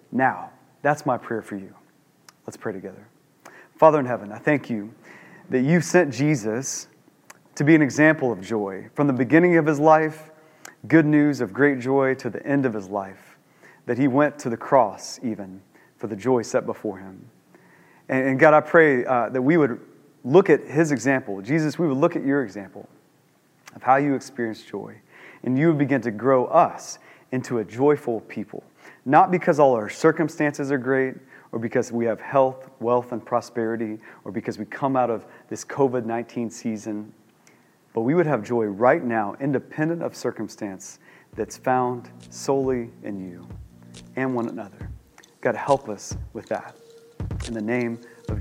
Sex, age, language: male, 30-49, English